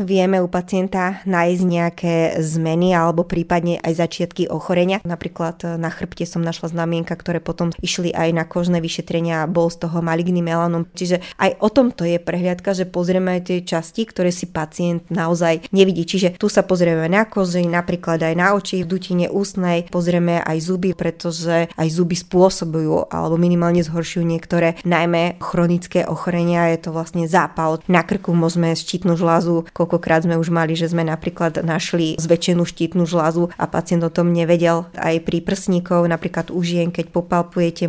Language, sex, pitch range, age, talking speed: Slovak, female, 170-180 Hz, 20-39, 165 wpm